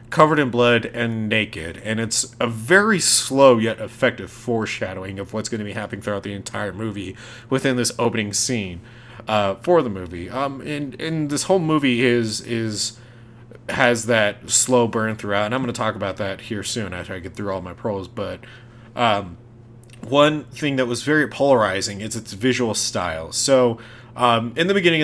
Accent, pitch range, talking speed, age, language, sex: American, 100-120 Hz, 185 wpm, 30-49, English, male